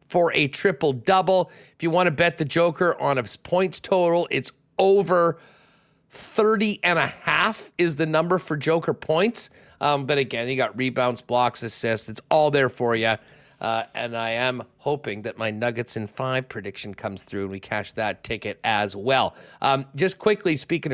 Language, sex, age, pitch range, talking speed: English, male, 40-59, 120-160 Hz, 180 wpm